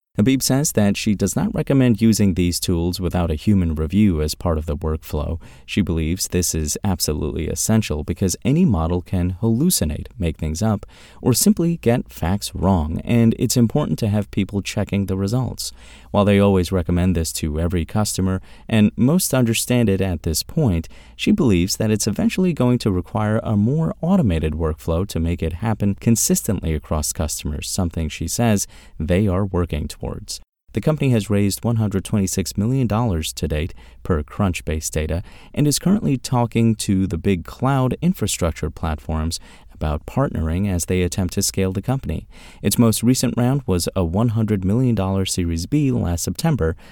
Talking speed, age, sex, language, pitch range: 165 wpm, 30-49, male, English, 85-115 Hz